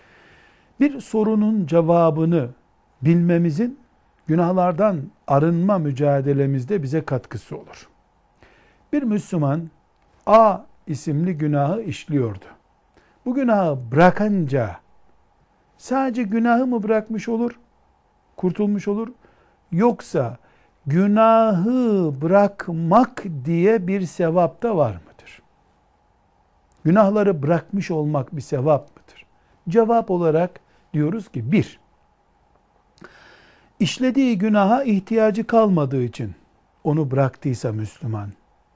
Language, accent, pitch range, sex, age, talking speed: Turkish, native, 145-215 Hz, male, 60-79, 80 wpm